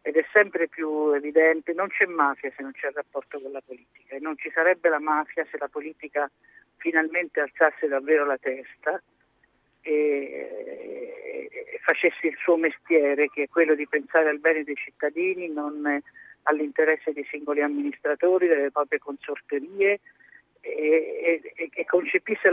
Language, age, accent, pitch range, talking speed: Italian, 50-69, native, 150-190 Hz, 150 wpm